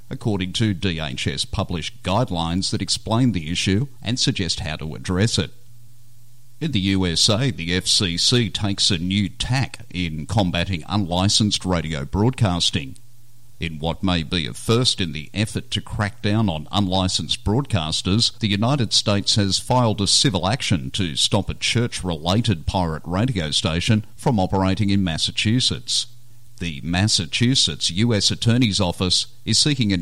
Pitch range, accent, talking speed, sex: 90-115 Hz, Australian, 140 wpm, male